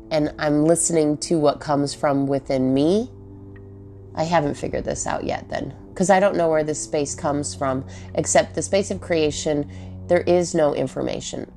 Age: 30-49